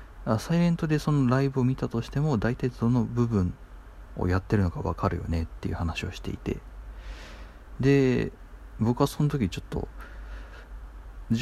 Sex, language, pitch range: male, Japanese, 85-135 Hz